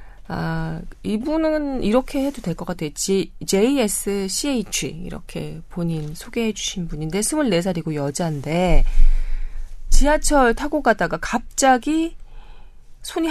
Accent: native